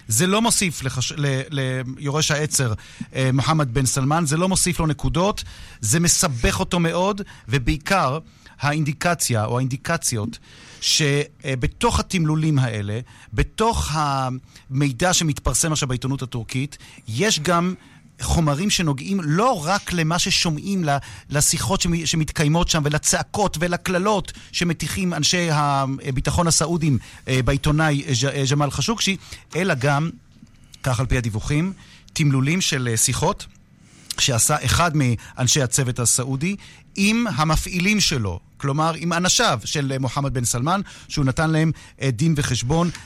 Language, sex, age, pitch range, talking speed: Hebrew, male, 40-59, 130-165 Hz, 115 wpm